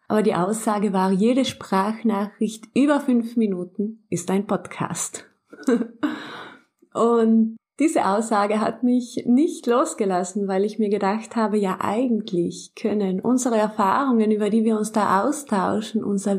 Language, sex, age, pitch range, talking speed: German, female, 20-39, 190-230 Hz, 130 wpm